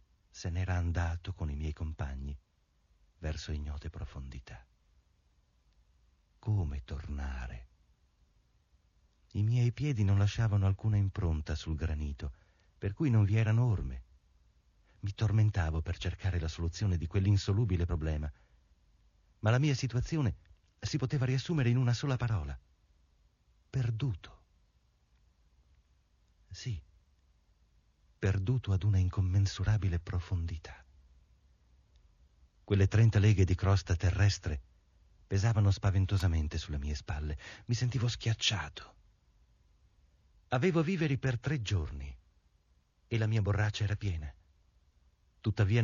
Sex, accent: male, native